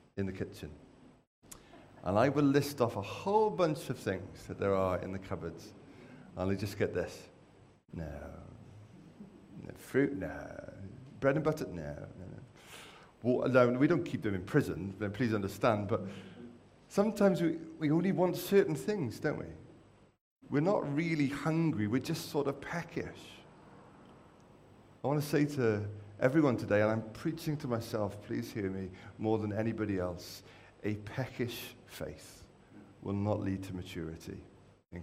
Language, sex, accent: English, male, British